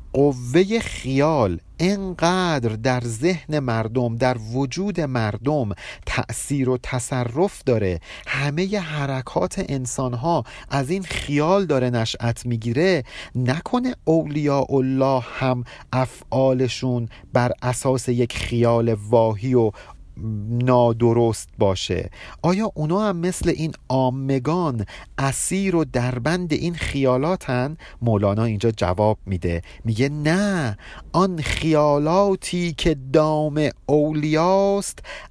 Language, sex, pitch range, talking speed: Persian, male, 125-170 Hz, 100 wpm